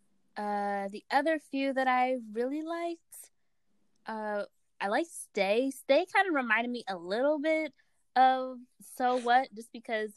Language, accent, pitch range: English, American, 170-250 Hz